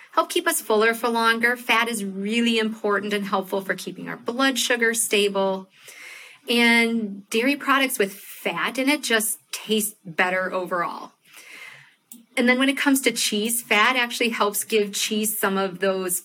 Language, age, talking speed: English, 40-59, 165 wpm